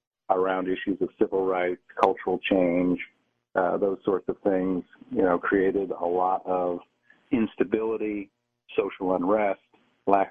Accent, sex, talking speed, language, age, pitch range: American, male, 130 wpm, English, 50-69, 90-105 Hz